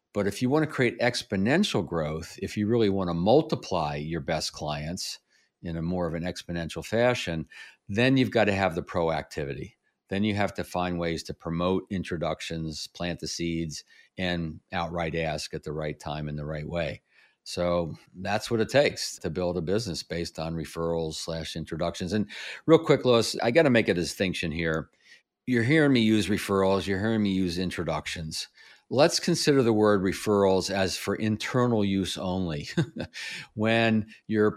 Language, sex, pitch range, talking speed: English, male, 85-110 Hz, 175 wpm